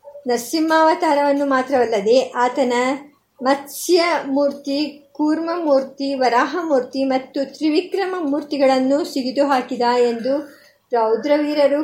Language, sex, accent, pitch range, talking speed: Kannada, male, native, 255-305 Hz, 75 wpm